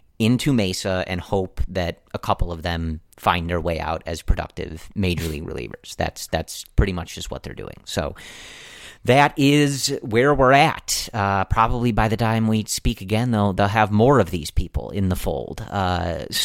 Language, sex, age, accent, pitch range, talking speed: English, male, 30-49, American, 90-110 Hz, 185 wpm